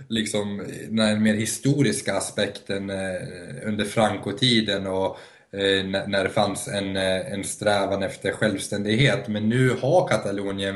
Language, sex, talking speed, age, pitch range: Swedish, male, 125 wpm, 20-39, 100-110 Hz